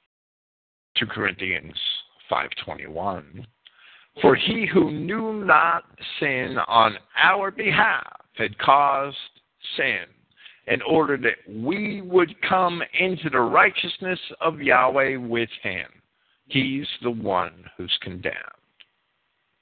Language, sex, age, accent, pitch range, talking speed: English, male, 50-69, American, 115-190 Hz, 100 wpm